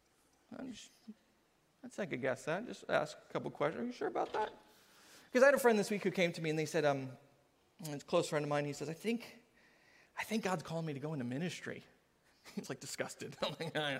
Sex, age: male, 30-49